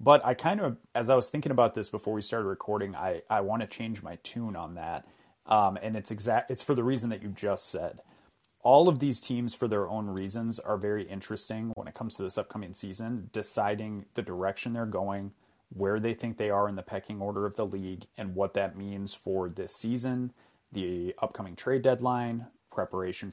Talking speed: 210 wpm